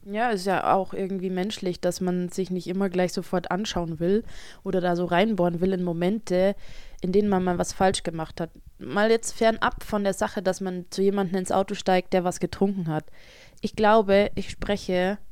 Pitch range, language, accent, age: 180-215 Hz, German, German, 20-39